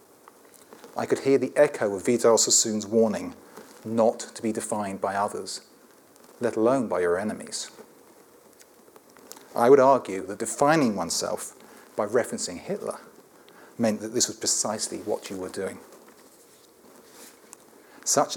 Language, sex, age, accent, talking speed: English, male, 40-59, British, 125 wpm